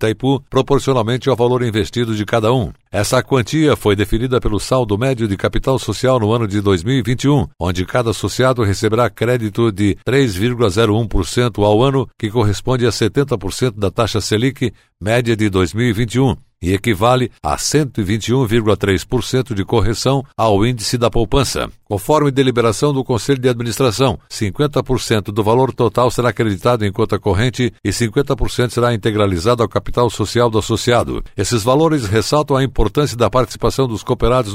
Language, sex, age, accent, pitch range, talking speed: Portuguese, male, 60-79, Brazilian, 105-130 Hz, 145 wpm